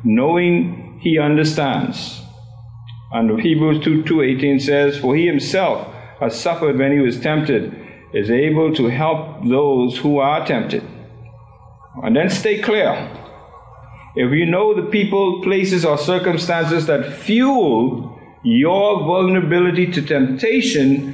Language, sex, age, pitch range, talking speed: English, male, 50-69, 130-175 Hz, 125 wpm